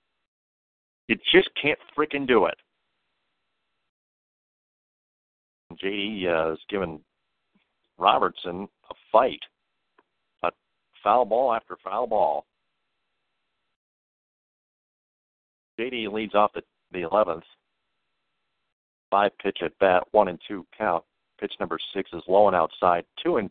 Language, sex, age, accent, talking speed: English, male, 50-69, American, 105 wpm